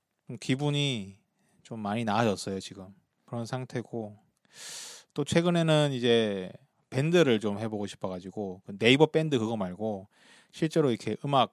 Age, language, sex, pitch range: 20-39, Korean, male, 100-140 Hz